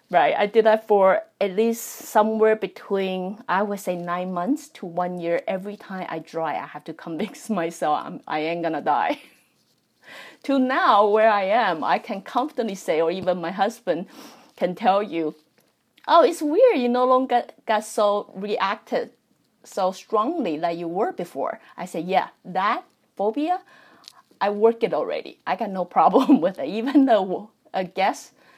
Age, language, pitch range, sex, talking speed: 30-49, English, 175-240 Hz, female, 175 wpm